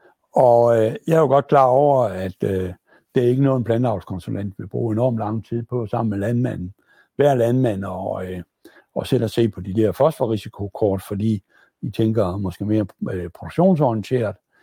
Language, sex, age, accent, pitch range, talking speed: Danish, male, 60-79, native, 100-130 Hz, 185 wpm